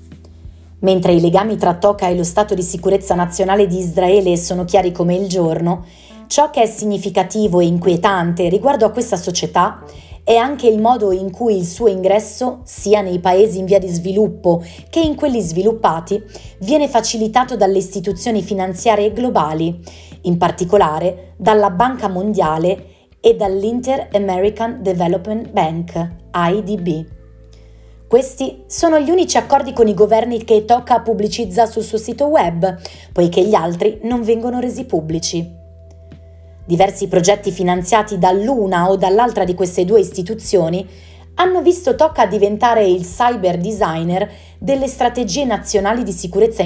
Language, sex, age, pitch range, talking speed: Italian, female, 30-49, 180-225 Hz, 140 wpm